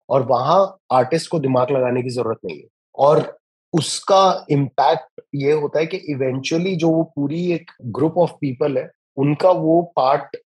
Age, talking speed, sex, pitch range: 30-49, 165 wpm, male, 135-180 Hz